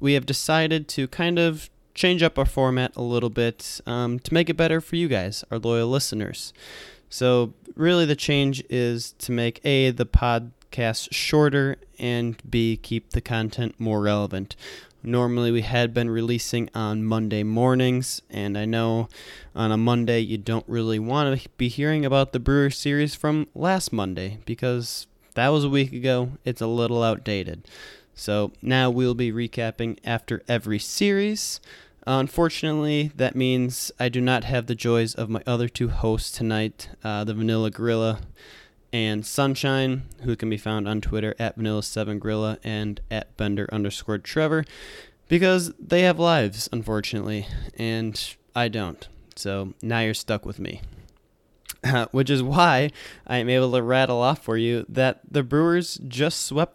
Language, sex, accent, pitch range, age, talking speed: English, male, American, 110-135 Hz, 20-39, 160 wpm